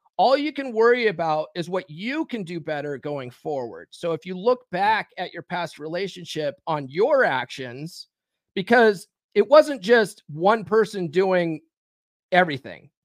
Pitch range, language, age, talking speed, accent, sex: 165-215 Hz, English, 40-59, 150 wpm, American, male